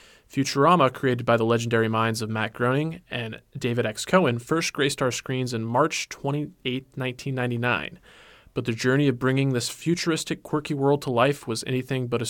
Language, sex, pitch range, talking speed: English, male, 120-150 Hz, 175 wpm